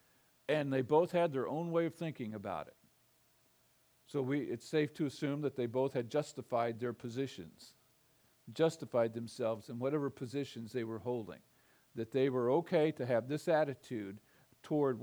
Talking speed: 165 wpm